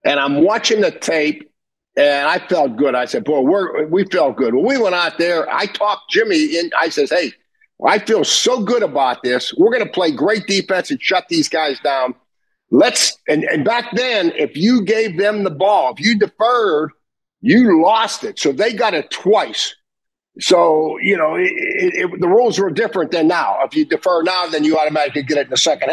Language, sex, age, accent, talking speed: English, male, 50-69, American, 210 wpm